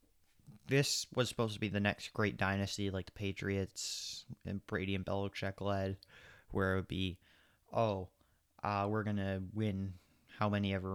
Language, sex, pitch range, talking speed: English, male, 95-115 Hz, 165 wpm